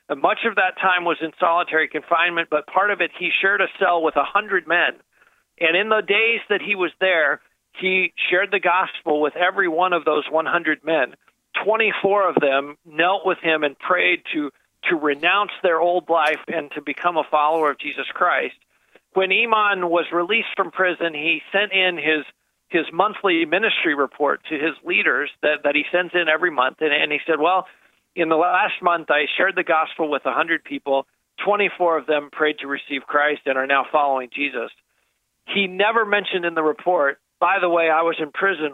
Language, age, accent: English, 50-69, American